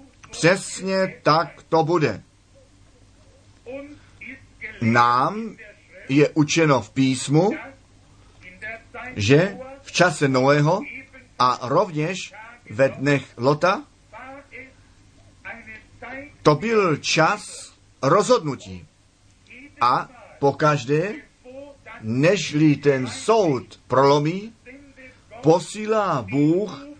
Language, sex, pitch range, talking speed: Czech, male, 120-205 Hz, 70 wpm